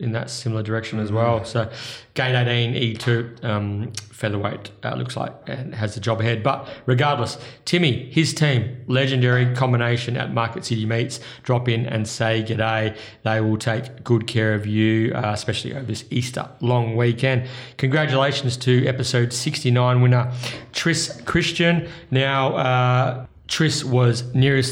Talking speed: 150 wpm